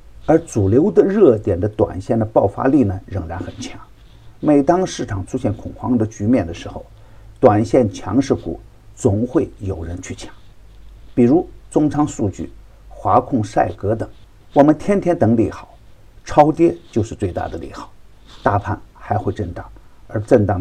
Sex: male